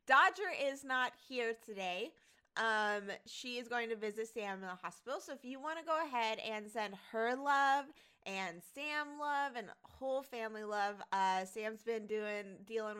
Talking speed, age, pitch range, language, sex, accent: 175 wpm, 20-39, 195-250 Hz, English, female, American